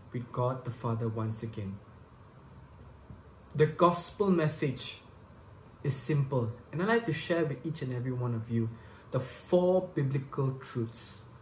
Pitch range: 115-155 Hz